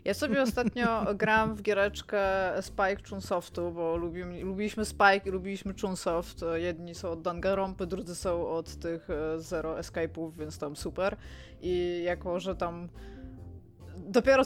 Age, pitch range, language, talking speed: 20-39, 180-220 Hz, Polish, 140 wpm